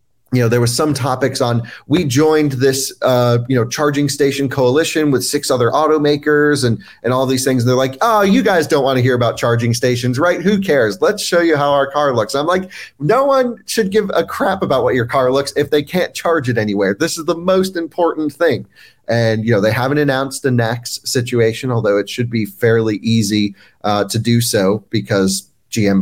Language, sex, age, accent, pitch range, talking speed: English, male, 30-49, American, 115-145 Hz, 215 wpm